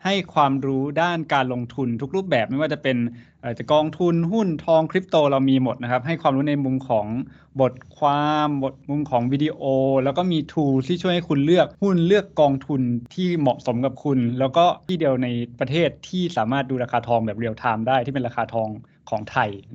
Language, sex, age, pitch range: Thai, male, 20-39, 120-150 Hz